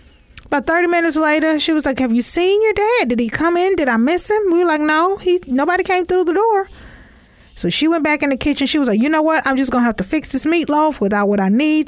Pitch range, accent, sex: 230-325 Hz, American, female